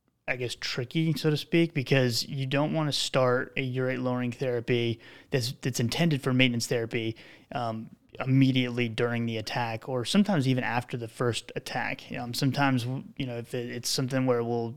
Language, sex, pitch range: English, male, 115-130 Hz